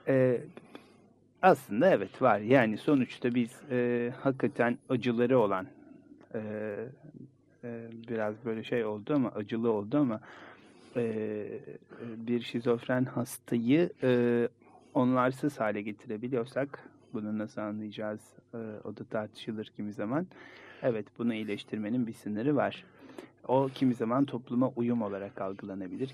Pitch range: 110-130 Hz